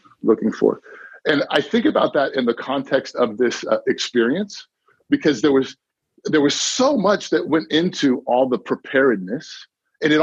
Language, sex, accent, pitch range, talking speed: English, male, American, 120-195 Hz, 170 wpm